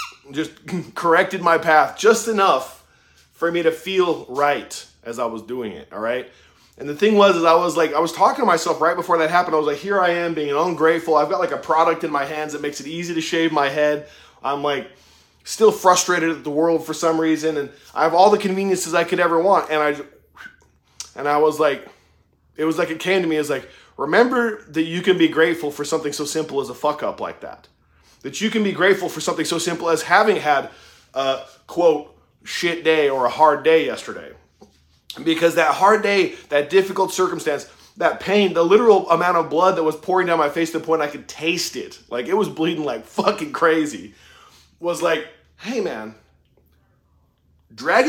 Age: 20-39